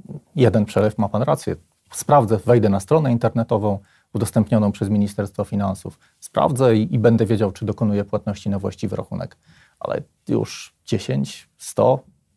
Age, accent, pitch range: 30-49, native, 105-135 Hz